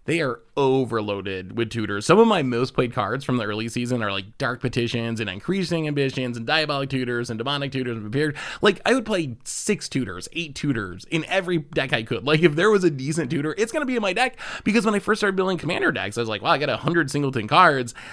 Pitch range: 115-165 Hz